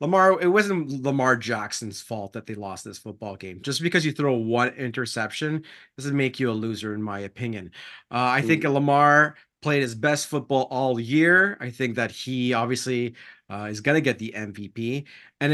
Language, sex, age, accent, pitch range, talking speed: English, male, 30-49, American, 120-145 Hz, 185 wpm